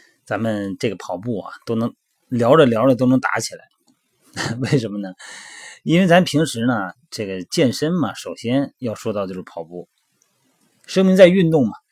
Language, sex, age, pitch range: Chinese, male, 30-49, 105-135 Hz